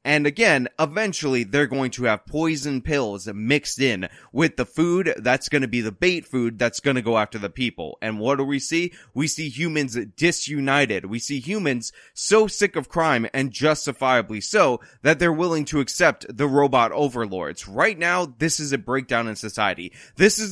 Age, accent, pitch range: 20-39, American, 125-175 Hz